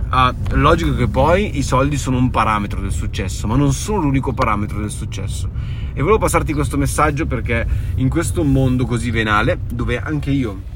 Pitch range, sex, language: 105-135 Hz, male, Italian